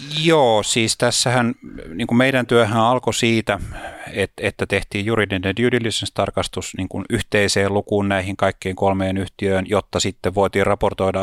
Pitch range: 90-105 Hz